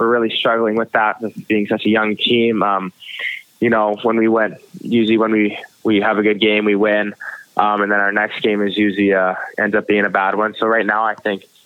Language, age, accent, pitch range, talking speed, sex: English, 20-39, American, 105-115 Hz, 235 wpm, male